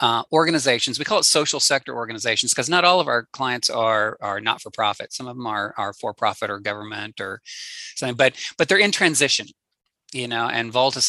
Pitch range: 110-130 Hz